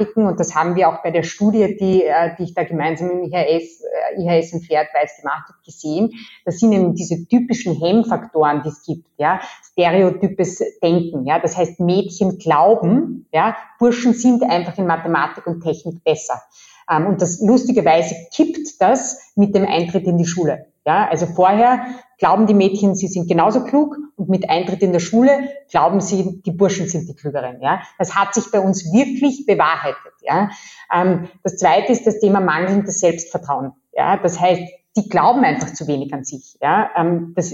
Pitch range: 170-215 Hz